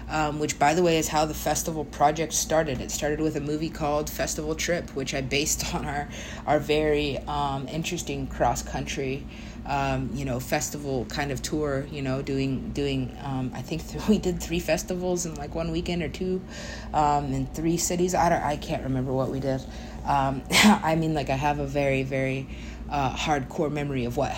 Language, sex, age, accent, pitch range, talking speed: English, female, 30-49, American, 130-160 Hz, 195 wpm